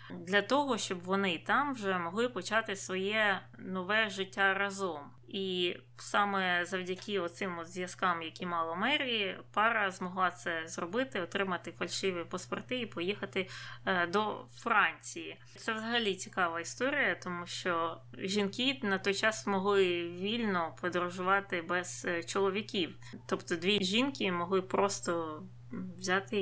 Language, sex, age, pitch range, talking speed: Ukrainian, female, 20-39, 175-215 Hz, 120 wpm